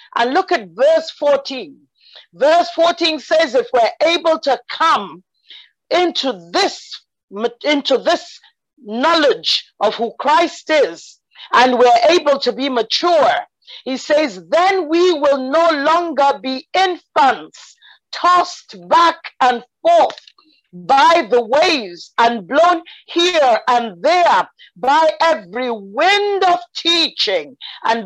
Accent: Nigerian